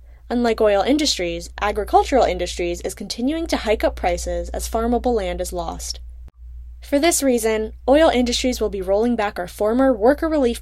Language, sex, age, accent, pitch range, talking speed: English, female, 10-29, American, 180-265 Hz, 165 wpm